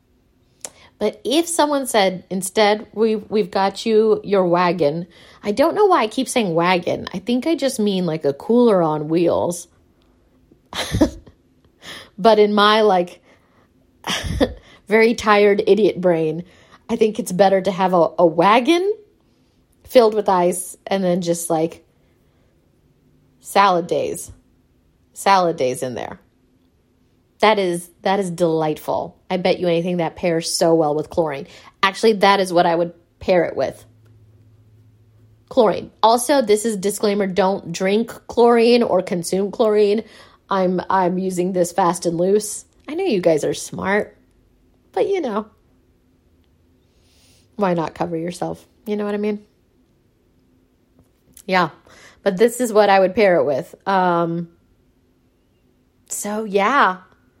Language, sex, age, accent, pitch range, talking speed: English, female, 30-49, American, 170-215 Hz, 135 wpm